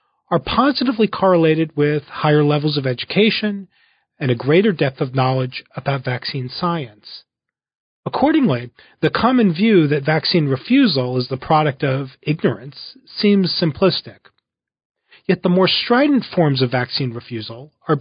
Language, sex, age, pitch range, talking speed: English, male, 40-59, 130-185 Hz, 135 wpm